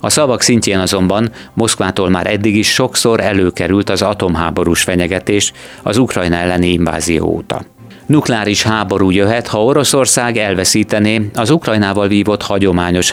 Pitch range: 90-110 Hz